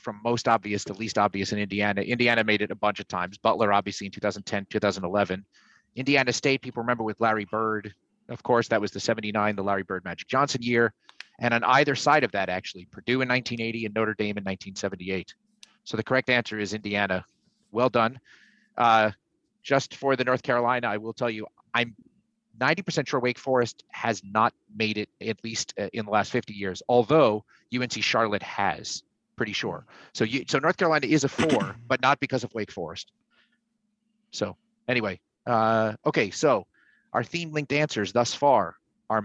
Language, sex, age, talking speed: English, male, 30-49, 185 wpm